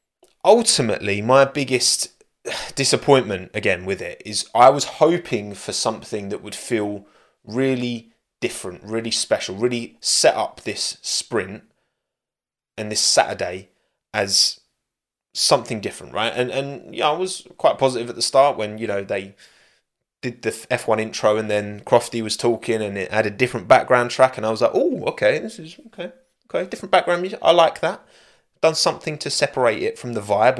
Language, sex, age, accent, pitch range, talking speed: English, male, 20-39, British, 115-145 Hz, 170 wpm